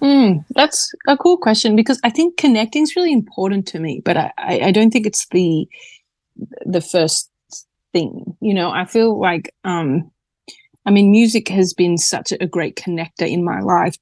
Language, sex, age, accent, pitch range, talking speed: English, female, 30-49, Australian, 170-200 Hz, 180 wpm